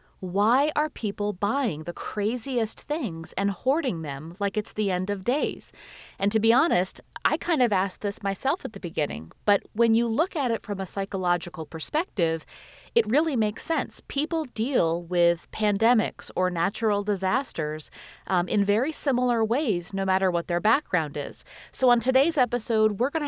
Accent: American